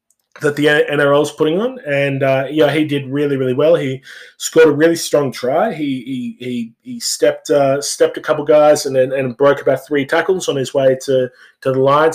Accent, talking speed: Australian, 225 wpm